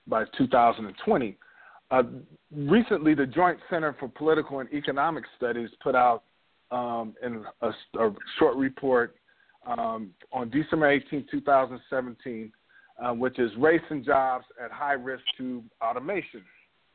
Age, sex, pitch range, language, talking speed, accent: 40-59, male, 125-155 Hz, English, 125 wpm, American